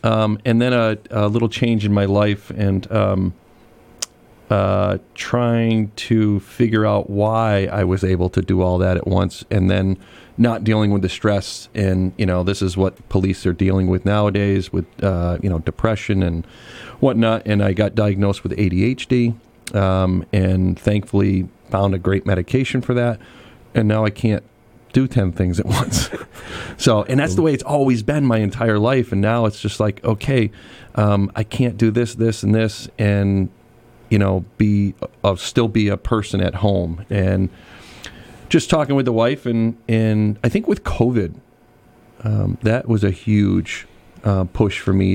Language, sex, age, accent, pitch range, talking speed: English, male, 40-59, American, 95-115 Hz, 180 wpm